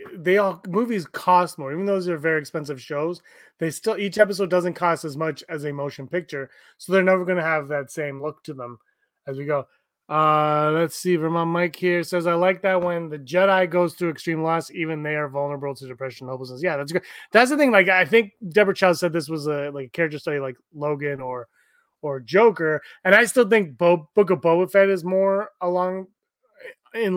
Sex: male